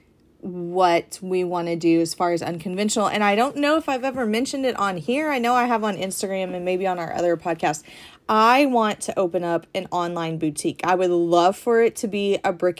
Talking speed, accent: 230 wpm, American